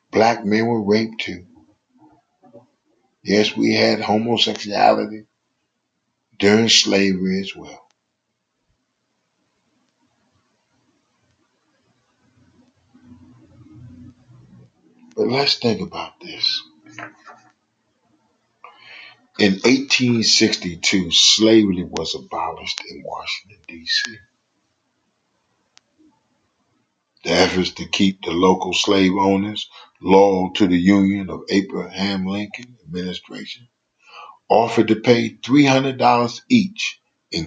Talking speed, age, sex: 75 wpm, 50-69, male